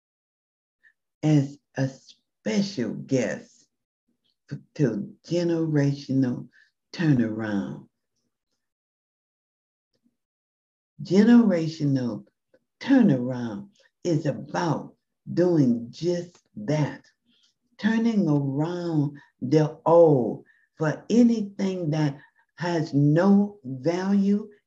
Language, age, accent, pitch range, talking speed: English, 60-79, American, 145-215 Hz, 60 wpm